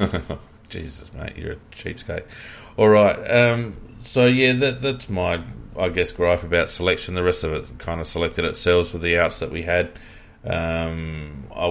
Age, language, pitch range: 40-59, English, 90-110 Hz